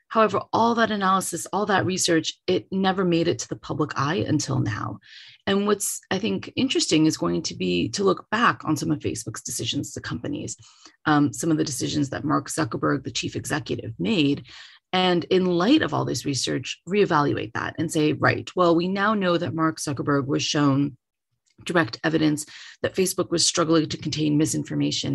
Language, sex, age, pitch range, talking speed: English, female, 30-49, 145-190 Hz, 185 wpm